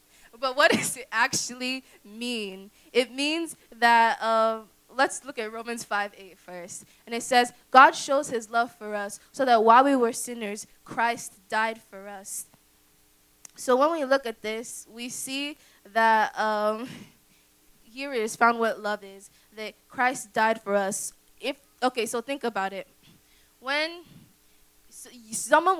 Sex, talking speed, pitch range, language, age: female, 155 wpm, 215-275 Hz, English, 10-29